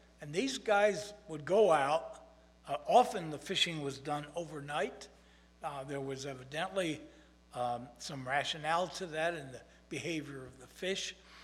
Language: English